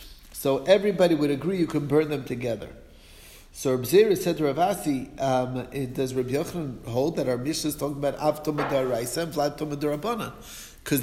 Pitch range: 135-170 Hz